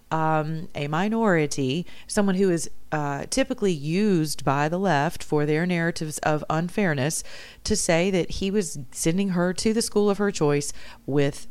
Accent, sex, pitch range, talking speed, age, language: American, female, 150-185 Hz, 160 wpm, 40-59, English